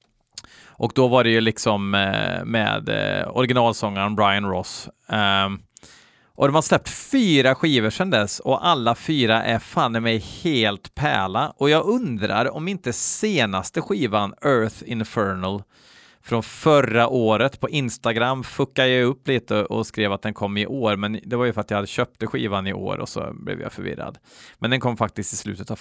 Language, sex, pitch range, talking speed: Swedish, male, 105-135 Hz, 175 wpm